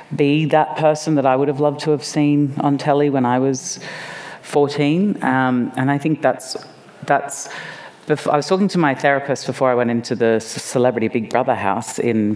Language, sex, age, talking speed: English, female, 40-59, 200 wpm